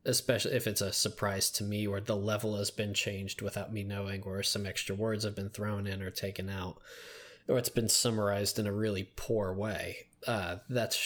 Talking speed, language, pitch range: 205 wpm, English, 100-120 Hz